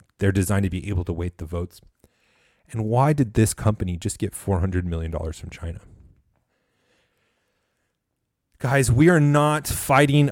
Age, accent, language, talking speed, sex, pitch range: 30-49, American, English, 150 wpm, male, 95-130 Hz